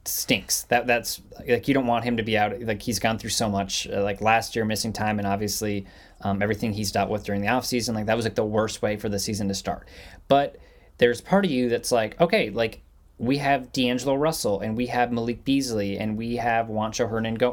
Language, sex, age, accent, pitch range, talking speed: English, male, 20-39, American, 105-120 Hz, 235 wpm